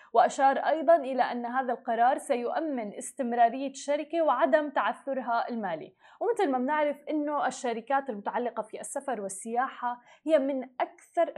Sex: female